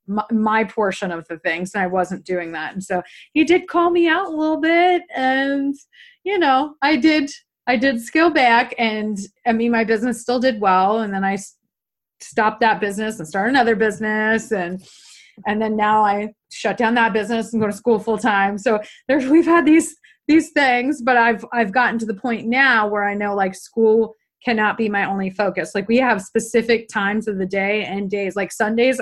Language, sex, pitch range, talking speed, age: English, female, 200-250 Hz, 205 wpm, 30-49